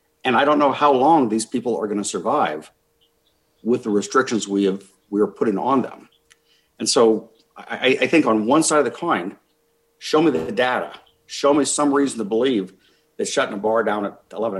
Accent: American